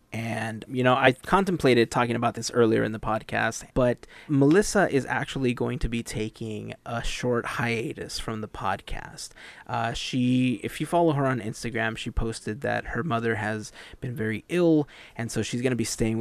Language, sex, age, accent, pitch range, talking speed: English, male, 20-39, American, 110-125 Hz, 185 wpm